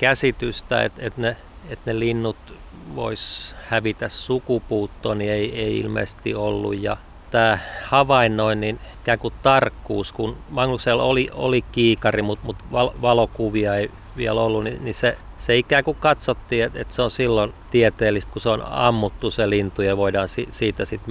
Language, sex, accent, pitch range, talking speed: Finnish, male, native, 105-120 Hz, 150 wpm